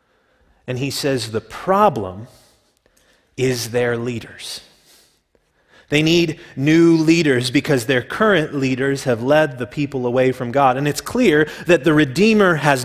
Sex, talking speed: male, 140 wpm